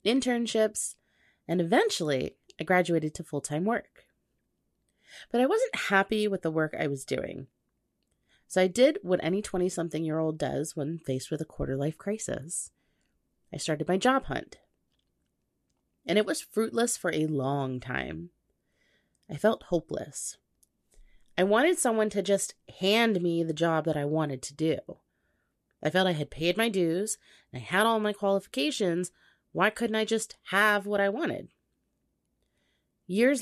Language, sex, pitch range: English, female, 160-225 Hz